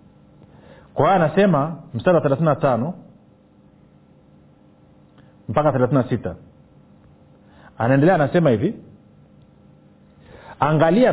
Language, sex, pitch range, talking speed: Swahili, male, 125-170 Hz, 60 wpm